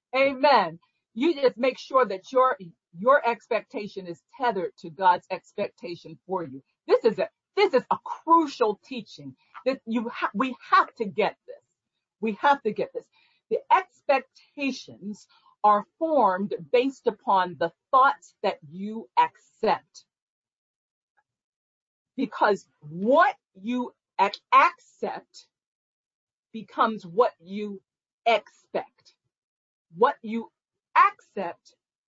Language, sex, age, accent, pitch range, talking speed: English, female, 50-69, American, 205-340 Hz, 110 wpm